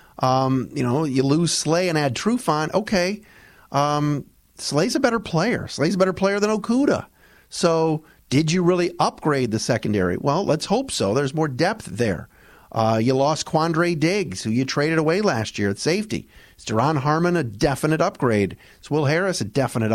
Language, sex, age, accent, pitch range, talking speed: English, male, 40-59, American, 125-170 Hz, 180 wpm